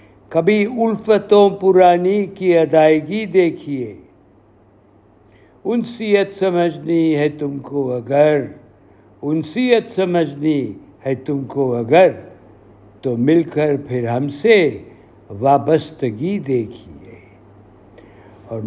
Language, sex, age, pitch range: Urdu, male, 60-79, 105-170 Hz